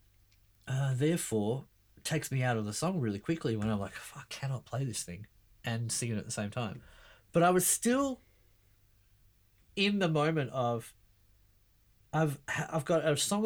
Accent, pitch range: Australian, 110-160 Hz